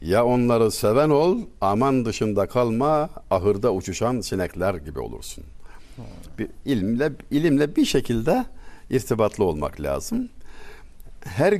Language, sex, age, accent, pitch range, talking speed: Turkish, male, 60-79, native, 95-145 Hz, 110 wpm